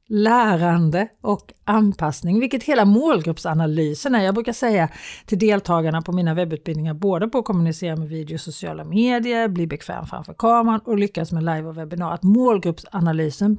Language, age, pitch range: Swedish, 40-59, 170-240 Hz